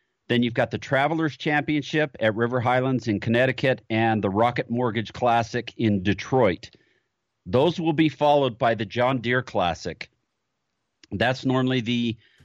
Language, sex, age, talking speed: English, male, 40-59, 145 wpm